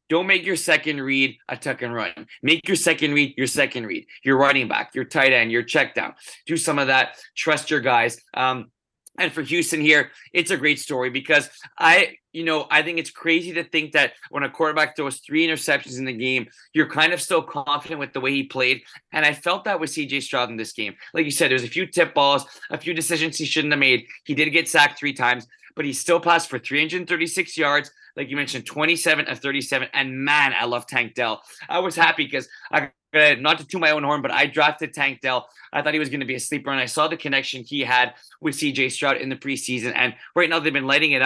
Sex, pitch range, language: male, 130-160 Hz, English